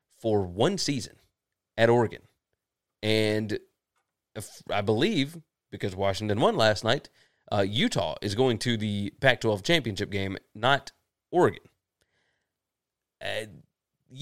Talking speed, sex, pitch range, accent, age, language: 110 wpm, male, 105-130 Hz, American, 30-49, English